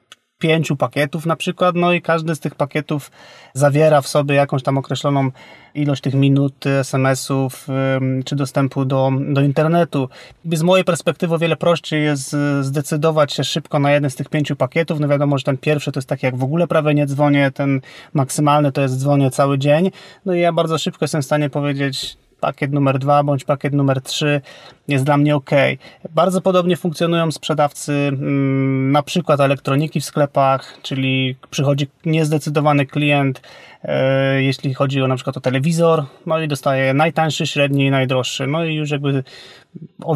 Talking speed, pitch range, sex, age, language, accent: 170 wpm, 140-160 Hz, male, 30-49, Polish, native